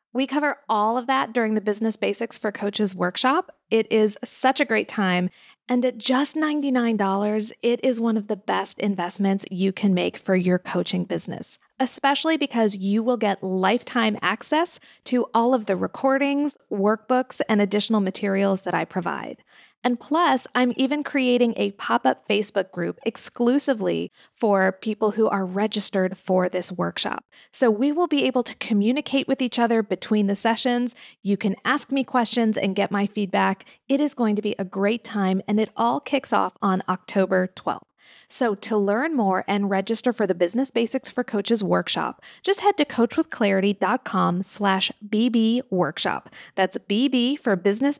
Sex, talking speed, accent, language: female, 165 wpm, American, English